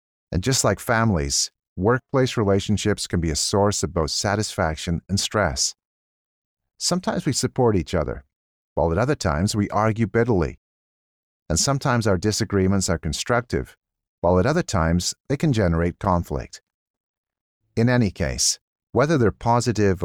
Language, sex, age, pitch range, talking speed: English, male, 40-59, 85-115 Hz, 140 wpm